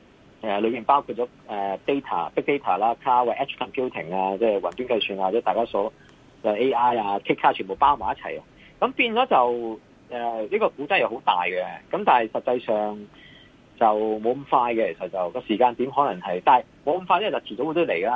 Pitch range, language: 100-140 Hz, Chinese